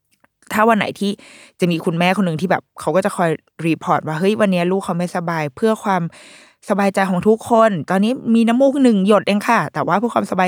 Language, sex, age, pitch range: Thai, female, 20-39, 150-205 Hz